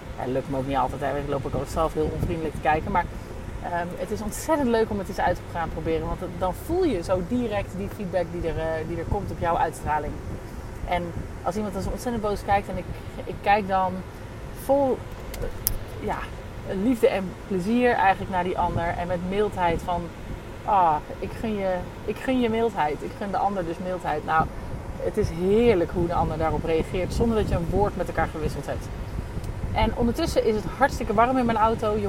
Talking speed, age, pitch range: 195 wpm, 30-49, 155-210 Hz